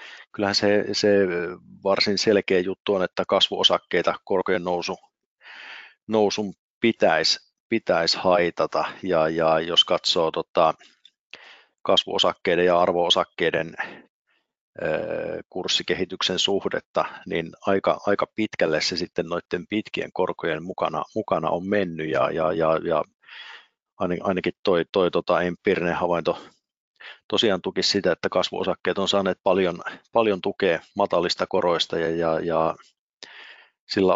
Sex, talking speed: male, 115 wpm